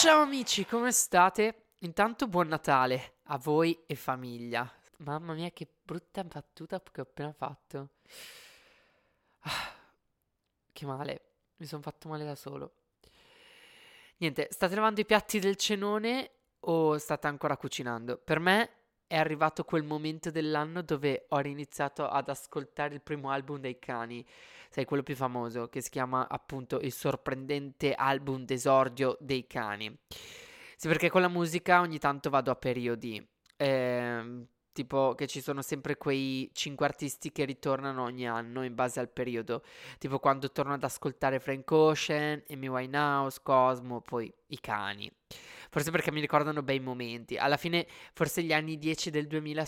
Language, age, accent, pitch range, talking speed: Italian, 20-39, native, 130-155 Hz, 150 wpm